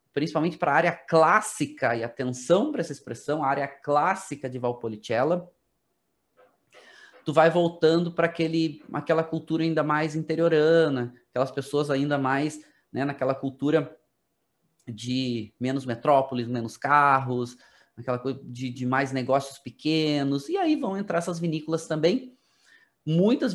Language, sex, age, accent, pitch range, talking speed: Portuguese, male, 30-49, Brazilian, 135-170 Hz, 130 wpm